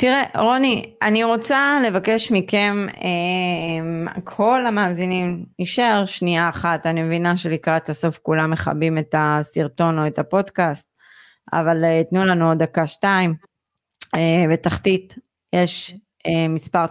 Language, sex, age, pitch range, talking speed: Hebrew, female, 30-49, 165-190 Hz, 115 wpm